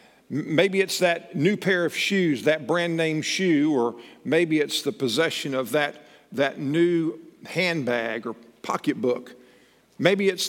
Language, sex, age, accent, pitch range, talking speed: English, male, 50-69, American, 125-160 Hz, 135 wpm